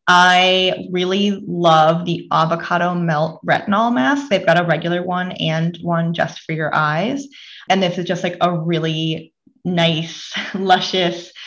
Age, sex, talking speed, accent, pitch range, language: 20-39, female, 145 wpm, American, 160-195 Hz, English